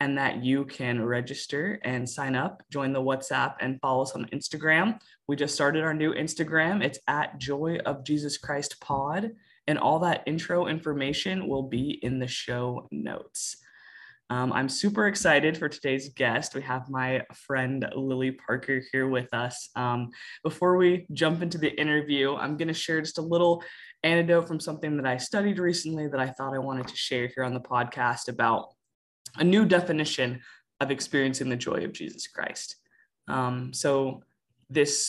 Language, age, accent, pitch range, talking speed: English, 20-39, American, 130-155 Hz, 170 wpm